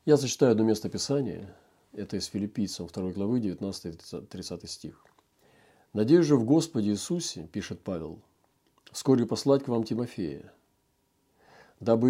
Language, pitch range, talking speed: Russian, 95-120 Hz, 125 wpm